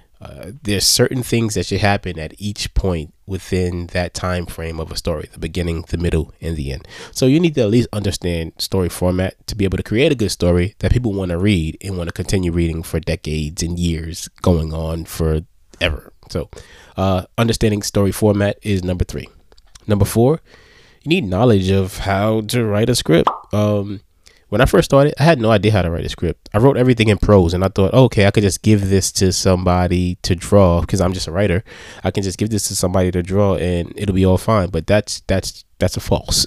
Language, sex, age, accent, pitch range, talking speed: English, male, 20-39, American, 90-105 Hz, 220 wpm